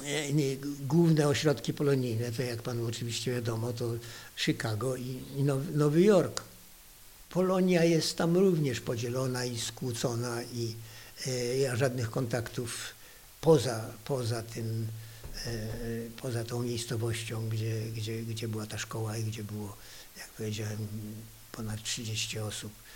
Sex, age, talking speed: male, 60-79, 105 wpm